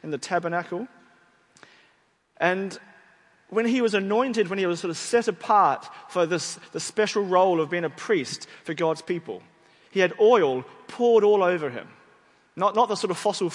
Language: English